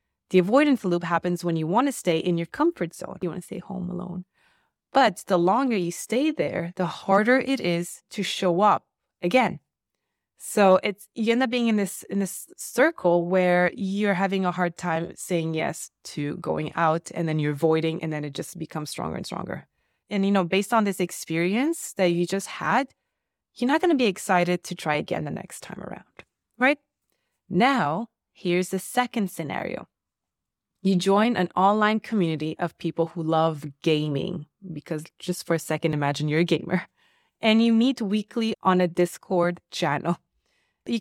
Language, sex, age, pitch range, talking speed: English, female, 20-39, 170-215 Hz, 185 wpm